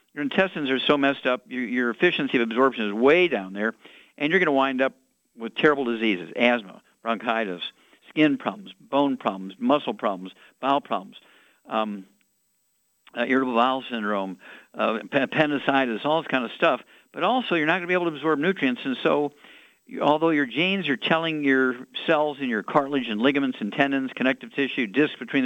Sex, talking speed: male, 180 wpm